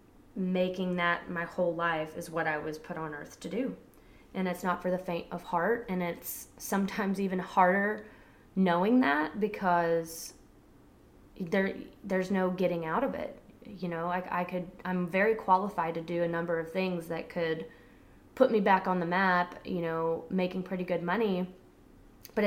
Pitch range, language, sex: 170-190 Hz, English, female